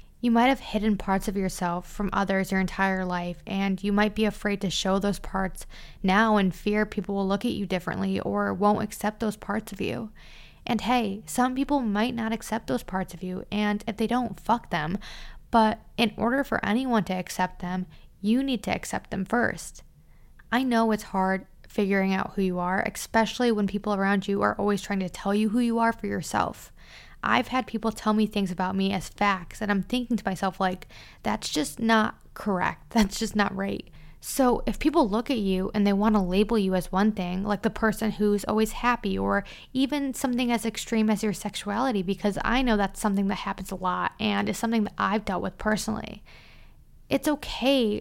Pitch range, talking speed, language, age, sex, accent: 195-225 Hz, 205 wpm, English, 20-39, female, American